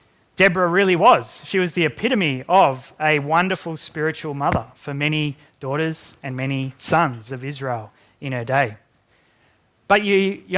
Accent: Australian